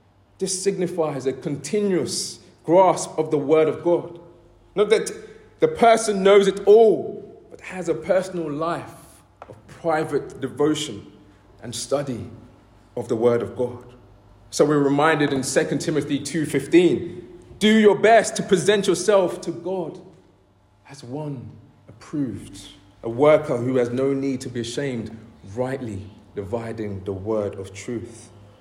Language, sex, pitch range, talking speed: English, male, 105-170 Hz, 135 wpm